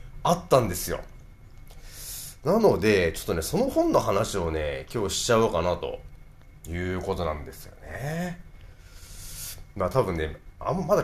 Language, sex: Japanese, male